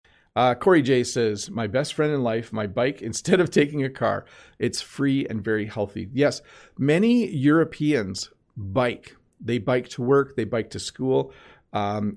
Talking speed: 170 wpm